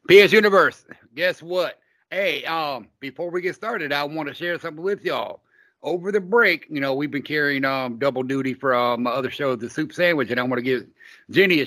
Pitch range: 135-180 Hz